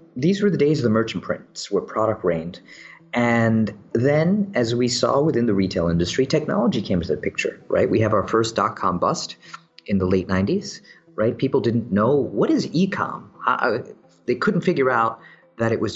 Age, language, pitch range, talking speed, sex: 40-59, English, 105-160 Hz, 190 wpm, male